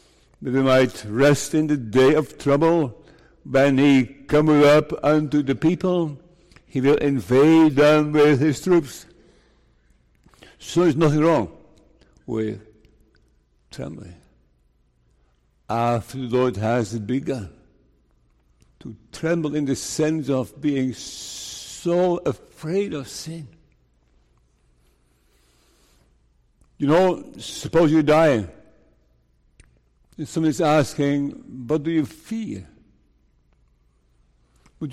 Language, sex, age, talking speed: English, male, 60-79, 100 wpm